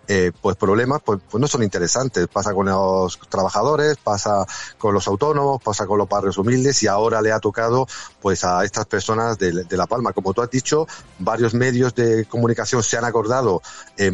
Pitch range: 95-120 Hz